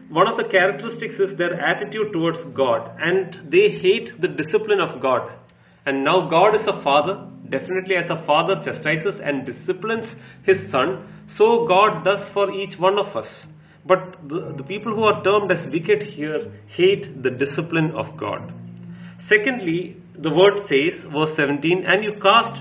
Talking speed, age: 165 wpm, 30-49